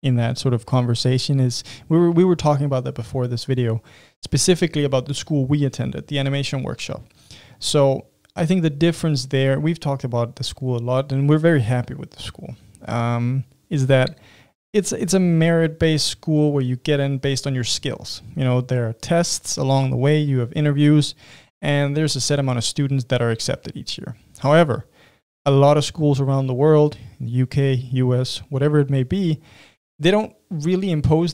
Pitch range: 125-155 Hz